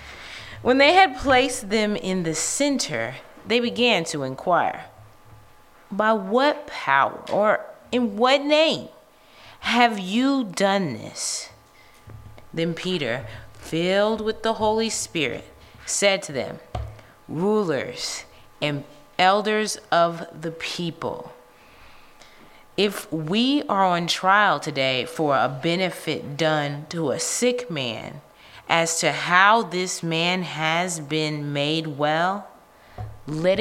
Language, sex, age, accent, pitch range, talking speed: English, female, 20-39, American, 140-215 Hz, 110 wpm